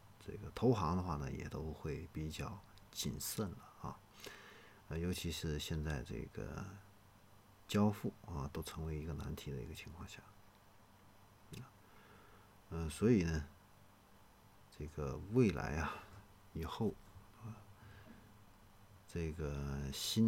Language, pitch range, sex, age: Chinese, 80-105 Hz, male, 50-69